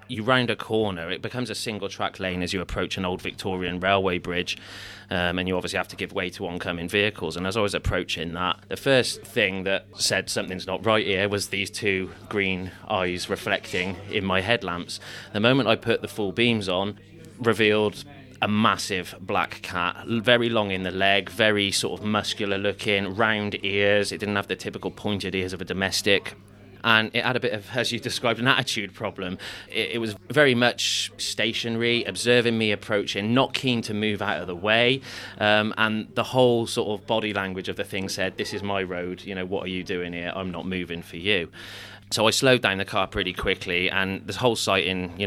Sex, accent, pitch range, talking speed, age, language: male, British, 90-110 Hz, 210 wpm, 20-39, English